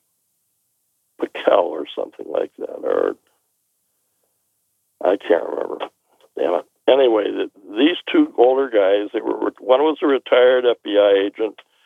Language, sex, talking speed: English, male, 120 wpm